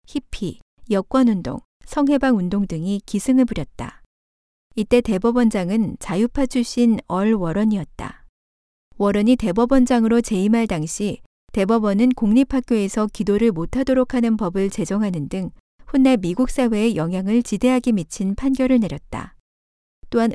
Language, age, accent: Korean, 50-69, native